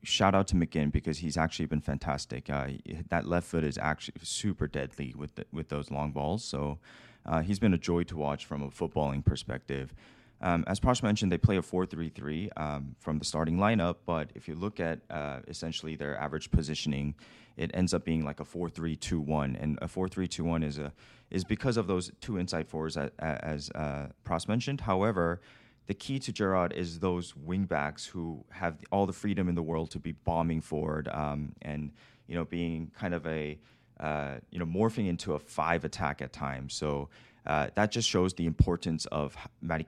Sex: male